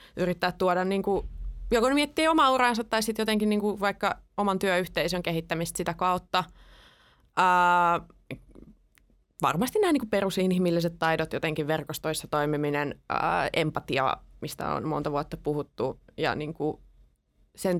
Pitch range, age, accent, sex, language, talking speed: 160-195 Hz, 20-39, native, female, Finnish, 130 wpm